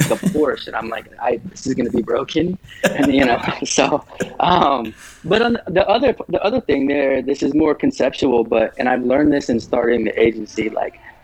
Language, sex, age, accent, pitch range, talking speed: English, male, 20-39, American, 110-135 Hz, 205 wpm